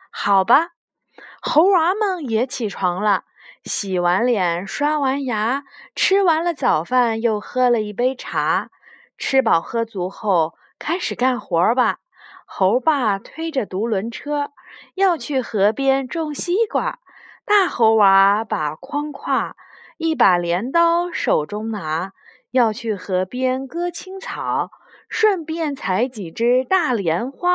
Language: Chinese